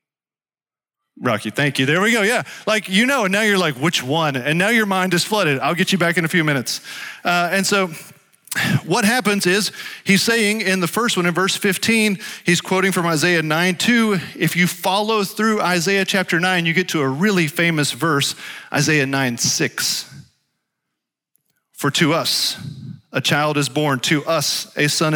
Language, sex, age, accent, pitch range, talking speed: English, male, 40-59, American, 150-190 Hz, 185 wpm